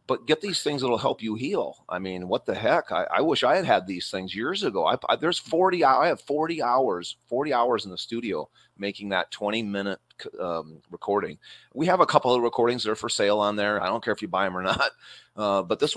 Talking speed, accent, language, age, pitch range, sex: 250 wpm, American, English, 30-49, 100-125 Hz, male